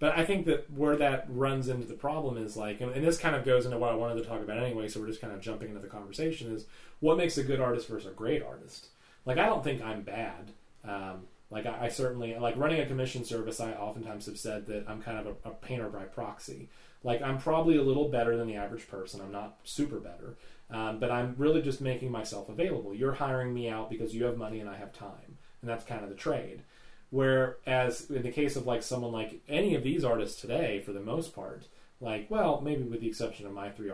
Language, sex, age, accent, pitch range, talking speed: English, male, 30-49, American, 105-135 Hz, 245 wpm